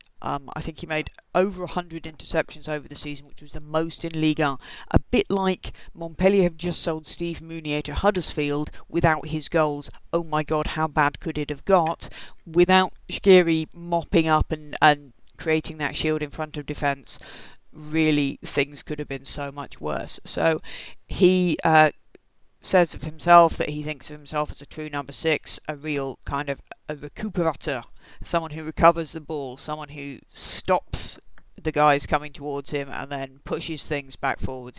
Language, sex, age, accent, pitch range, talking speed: English, female, 40-59, British, 145-165 Hz, 180 wpm